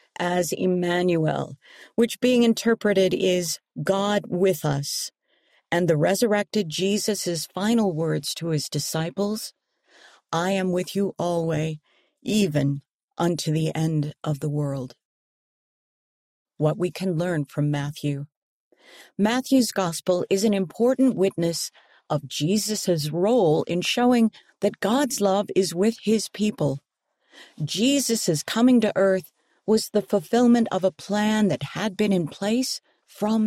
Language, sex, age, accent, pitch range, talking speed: English, female, 50-69, American, 155-215 Hz, 125 wpm